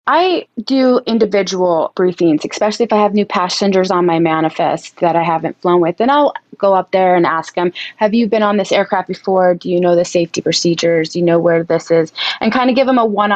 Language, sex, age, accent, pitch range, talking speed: English, female, 20-39, American, 180-215 Hz, 235 wpm